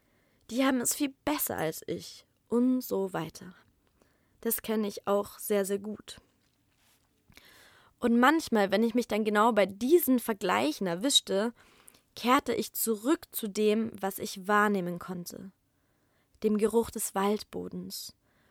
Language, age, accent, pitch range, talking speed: German, 20-39, German, 205-250 Hz, 135 wpm